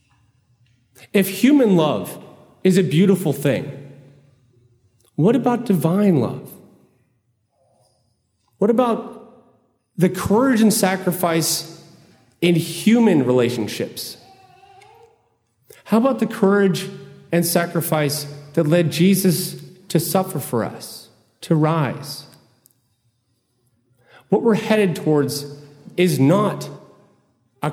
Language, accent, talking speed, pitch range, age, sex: English, American, 90 wpm, 130-185 Hz, 40-59, male